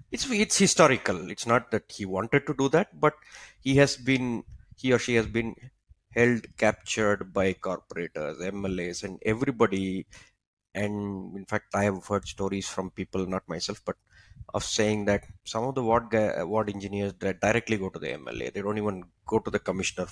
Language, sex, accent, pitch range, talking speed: English, male, Indian, 95-125 Hz, 180 wpm